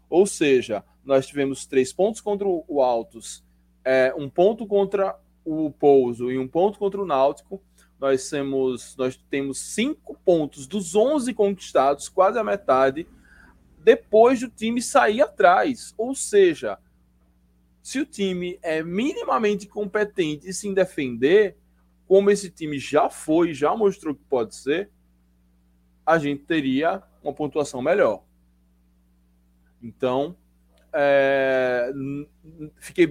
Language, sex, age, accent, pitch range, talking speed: Portuguese, male, 20-39, Brazilian, 135-205 Hz, 120 wpm